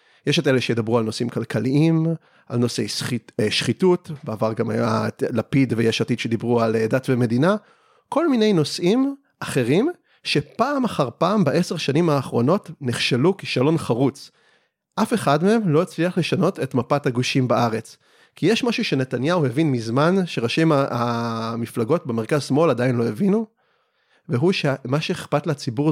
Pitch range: 120-170 Hz